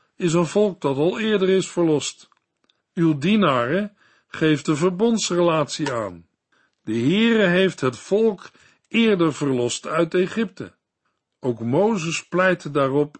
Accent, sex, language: Dutch, male, Dutch